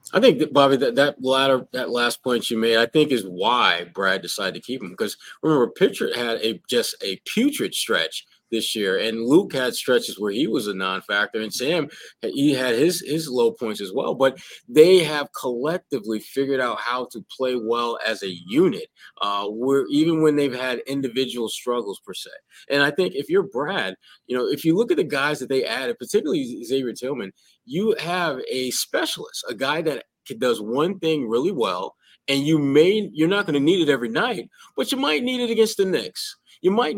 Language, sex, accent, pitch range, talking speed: English, male, American, 120-165 Hz, 205 wpm